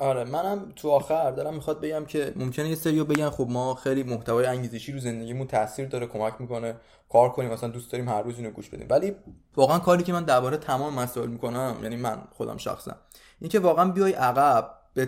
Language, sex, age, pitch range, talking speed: Persian, male, 20-39, 125-155 Hz, 205 wpm